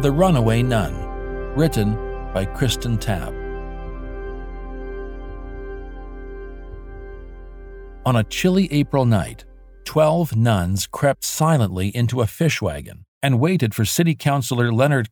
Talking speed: 105 wpm